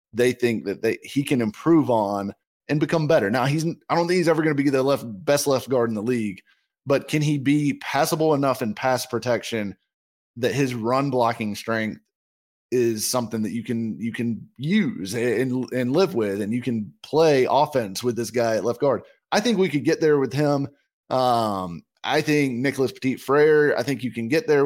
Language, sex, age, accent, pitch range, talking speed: English, male, 20-39, American, 115-150 Hz, 210 wpm